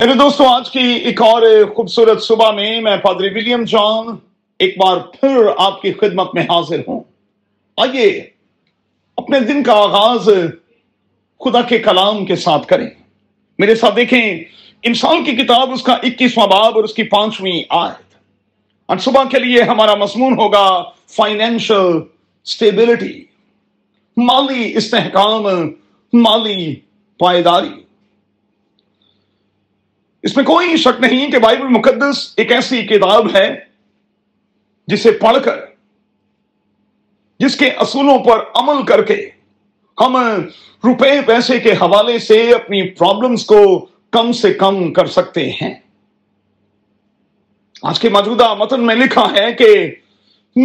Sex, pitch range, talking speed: male, 195-245 Hz, 125 wpm